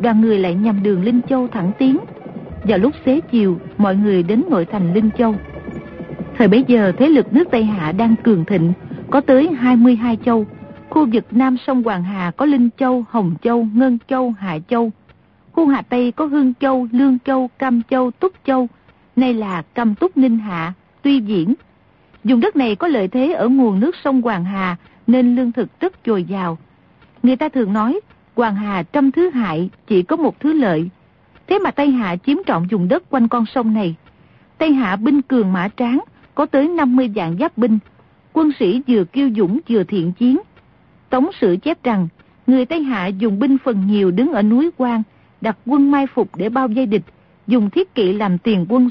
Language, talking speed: Vietnamese, 200 wpm